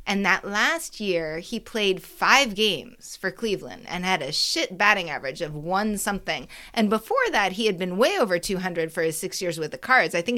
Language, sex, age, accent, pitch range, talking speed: English, female, 30-49, American, 180-230 Hz, 215 wpm